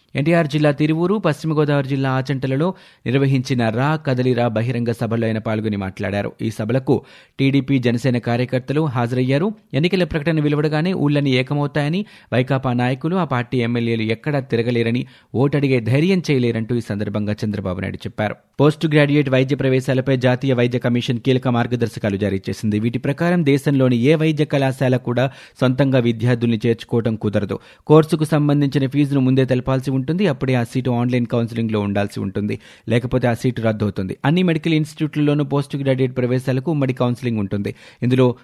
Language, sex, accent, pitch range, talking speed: Telugu, male, native, 120-145 Hz, 140 wpm